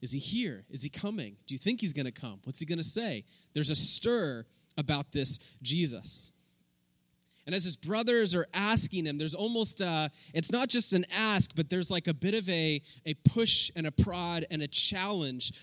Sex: male